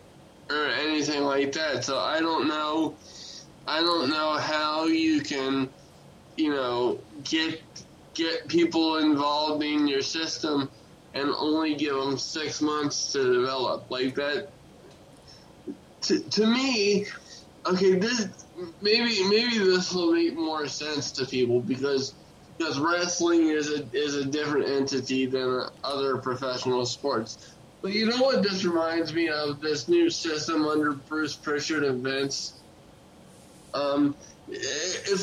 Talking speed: 130 wpm